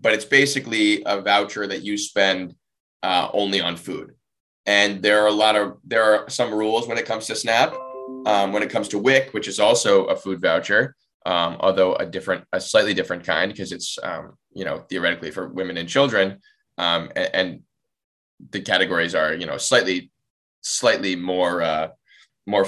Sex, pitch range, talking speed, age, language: male, 95-115 Hz, 185 wpm, 20-39, English